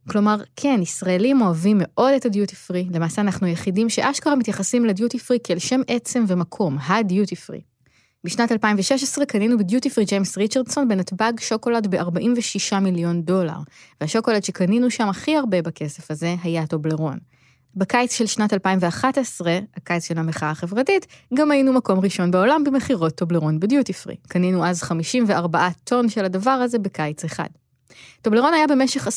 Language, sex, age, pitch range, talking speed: Hebrew, female, 20-39, 175-235 Hz, 145 wpm